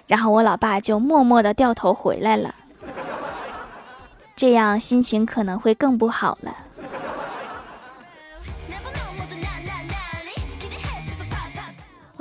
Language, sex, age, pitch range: Chinese, female, 20-39, 220-285 Hz